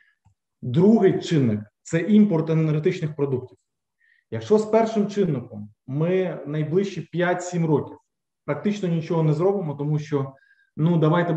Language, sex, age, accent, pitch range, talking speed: Ukrainian, male, 20-39, native, 130-175 Hz, 120 wpm